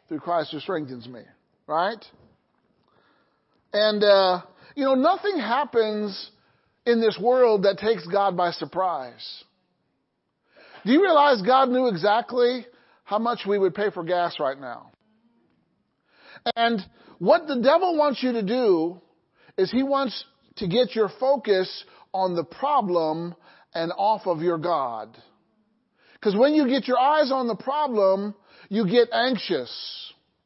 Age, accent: 40-59, American